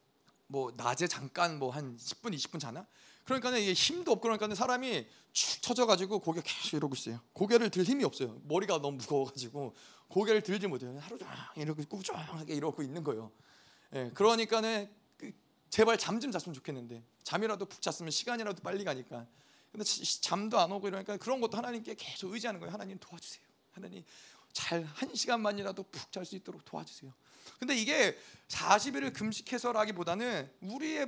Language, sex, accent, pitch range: Korean, male, native, 195-270 Hz